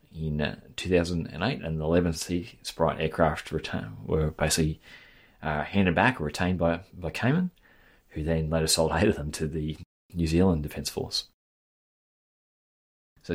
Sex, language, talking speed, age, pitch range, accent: male, English, 140 wpm, 30-49, 80-105 Hz, Australian